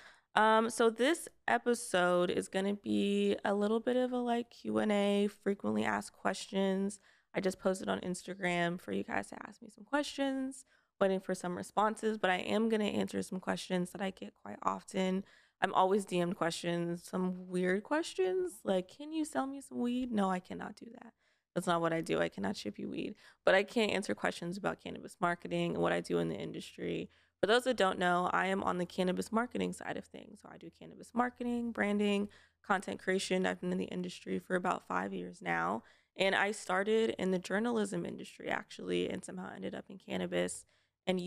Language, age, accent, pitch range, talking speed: English, 20-39, American, 170-205 Hz, 200 wpm